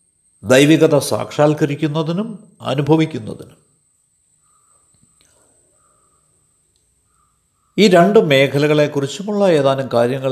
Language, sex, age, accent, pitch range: Malayalam, male, 60-79, native, 125-175 Hz